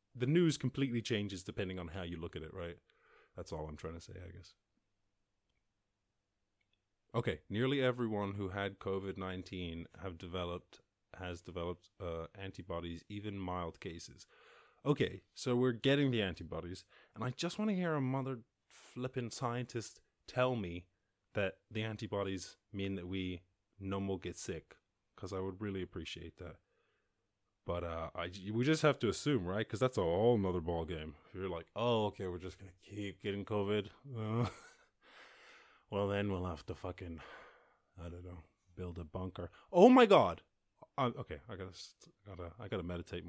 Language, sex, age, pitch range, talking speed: English, male, 30-49, 90-120 Hz, 170 wpm